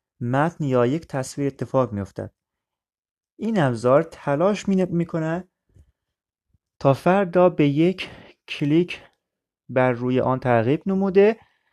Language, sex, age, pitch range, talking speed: Persian, male, 30-49, 120-165 Hz, 125 wpm